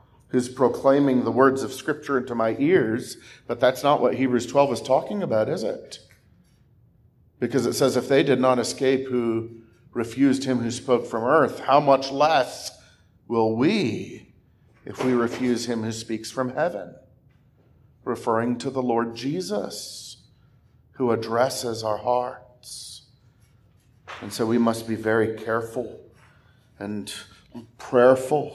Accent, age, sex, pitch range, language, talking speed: American, 40-59, male, 120-150 Hz, English, 140 wpm